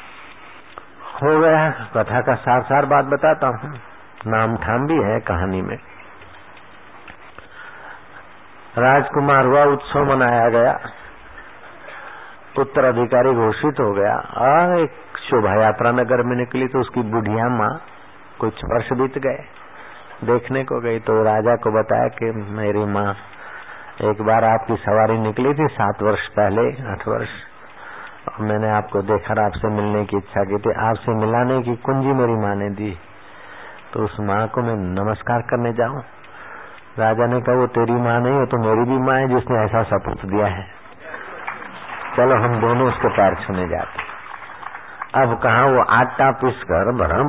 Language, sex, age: Hindi, male, 60-79